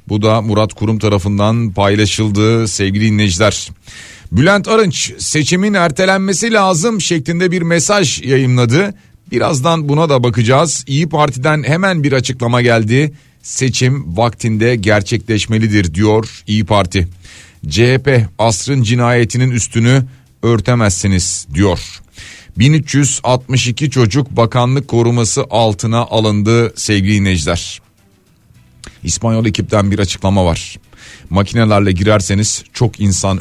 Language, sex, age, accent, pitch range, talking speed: Turkish, male, 40-59, native, 100-130 Hz, 100 wpm